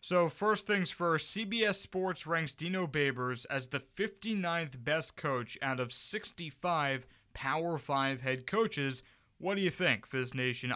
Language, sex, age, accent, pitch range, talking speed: English, male, 20-39, American, 125-175 Hz, 150 wpm